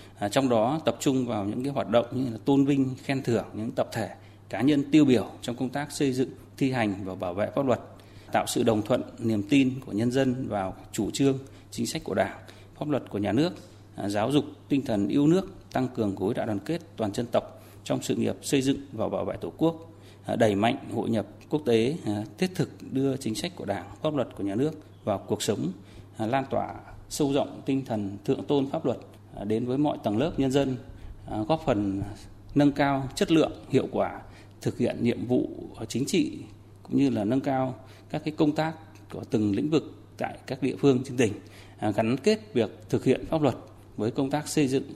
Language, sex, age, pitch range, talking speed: Vietnamese, male, 20-39, 105-140 Hz, 220 wpm